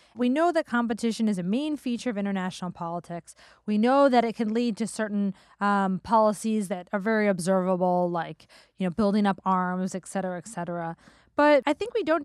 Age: 20-39